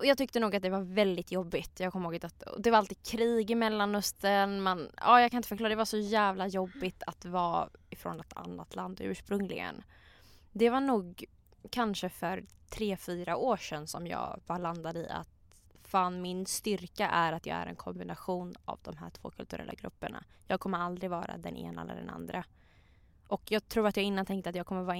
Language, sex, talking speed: English, female, 205 wpm